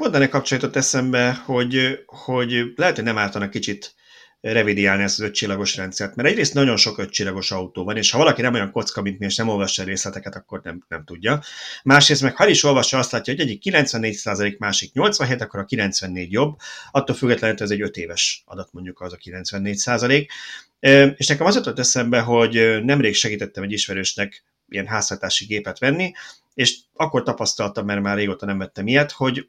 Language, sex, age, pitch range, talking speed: Hungarian, male, 30-49, 100-135 Hz, 185 wpm